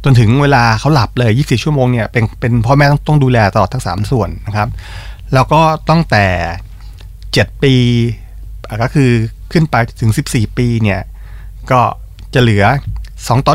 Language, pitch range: Thai, 100-135 Hz